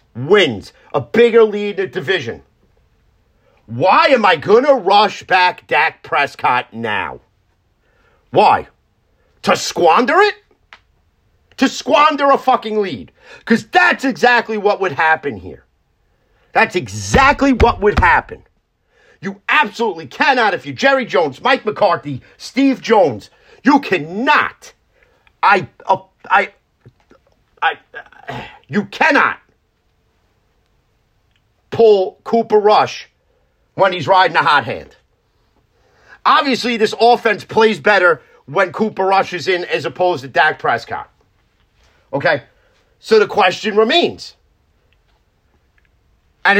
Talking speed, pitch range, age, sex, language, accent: 115 wpm, 185-245 Hz, 50-69, male, English, American